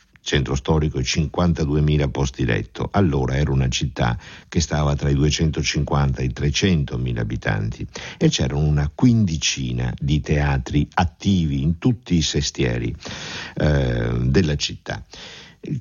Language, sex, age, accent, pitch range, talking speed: Italian, male, 50-69, native, 75-100 Hz, 130 wpm